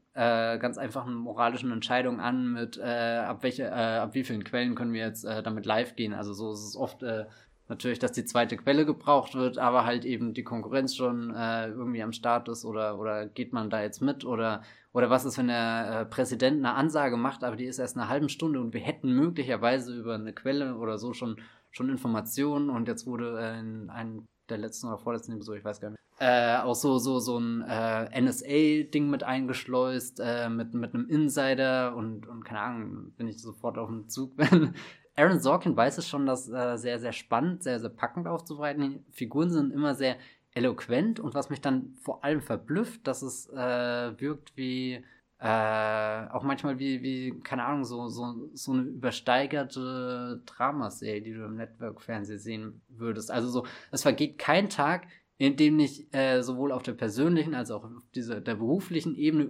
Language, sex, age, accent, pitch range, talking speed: German, male, 20-39, German, 115-140 Hz, 200 wpm